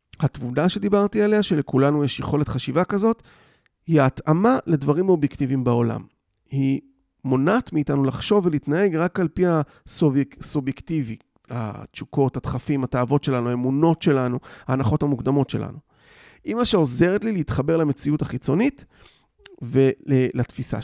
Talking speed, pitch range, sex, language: 115 wpm, 130-175 Hz, male, Hebrew